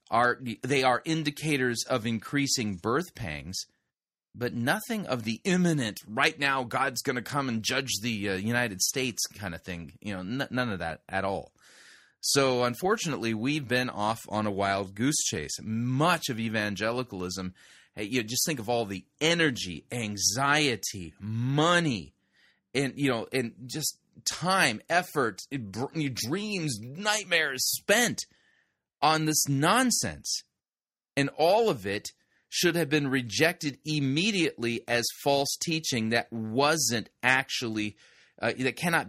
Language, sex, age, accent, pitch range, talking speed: English, male, 30-49, American, 110-140 Hz, 140 wpm